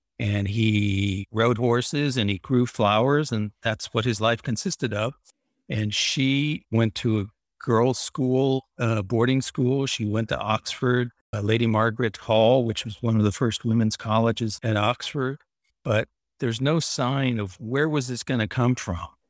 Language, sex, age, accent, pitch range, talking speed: English, male, 50-69, American, 110-125 Hz, 170 wpm